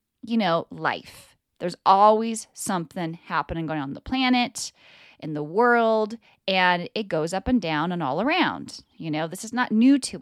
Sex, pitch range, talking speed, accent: female, 165-225 Hz, 180 wpm, American